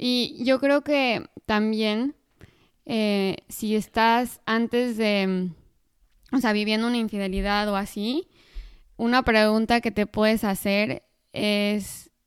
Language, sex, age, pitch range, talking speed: Spanish, female, 20-39, 200-225 Hz, 115 wpm